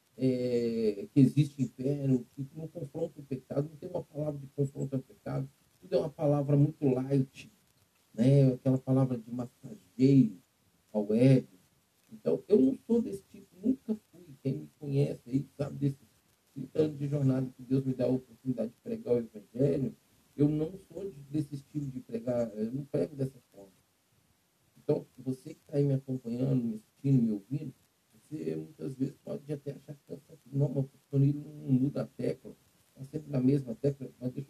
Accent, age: Brazilian, 50-69